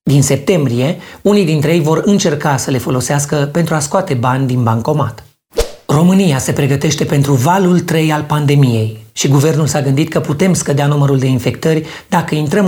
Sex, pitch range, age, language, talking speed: male, 135-165 Hz, 30-49, Romanian, 170 wpm